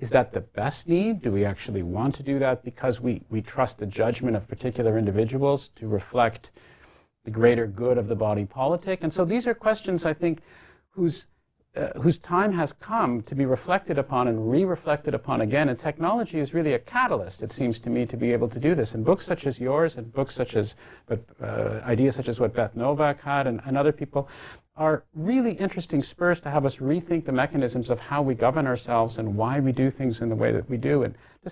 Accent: American